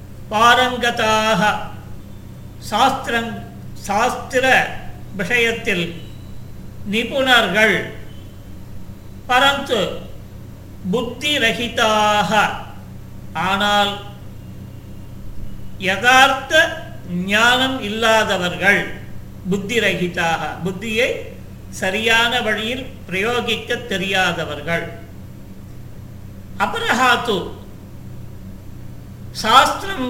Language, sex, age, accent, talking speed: Tamil, male, 50-69, native, 40 wpm